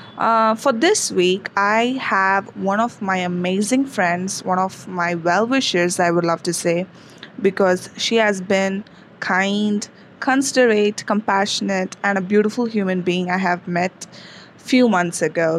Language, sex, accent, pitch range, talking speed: English, female, Indian, 185-225 Hz, 145 wpm